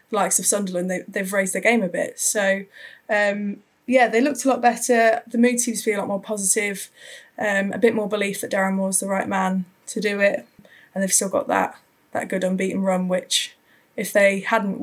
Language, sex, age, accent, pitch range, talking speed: English, female, 20-39, British, 180-210 Hz, 225 wpm